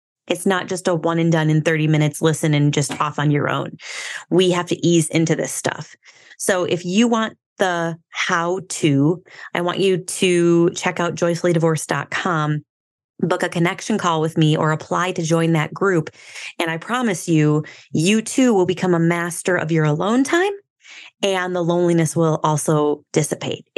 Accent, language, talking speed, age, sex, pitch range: American, English, 175 wpm, 20-39, female, 160-195 Hz